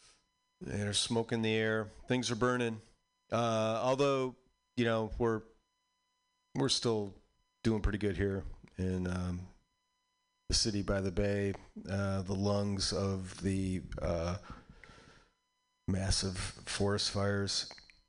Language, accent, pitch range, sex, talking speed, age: English, American, 95-125 Hz, male, 115 wpm, 40-59